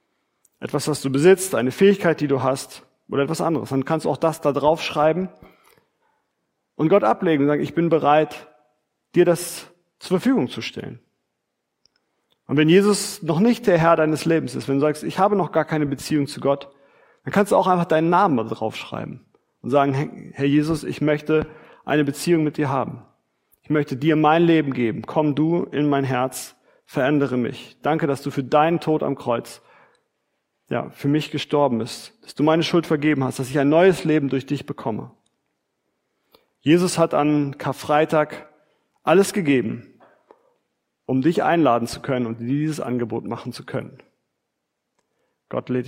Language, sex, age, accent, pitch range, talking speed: German, male, 40-59, German, 135-165 Hz, 175 wpm